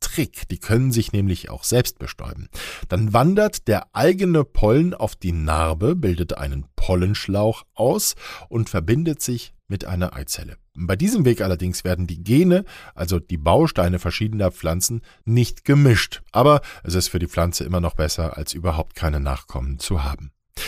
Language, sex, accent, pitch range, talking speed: German, male, German, 85-125 Hz, 155 wpm